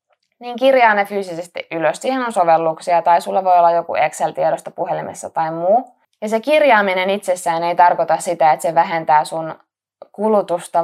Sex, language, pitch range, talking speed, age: female, Finnish, 170-220 Hz, 165 wpm, 20-39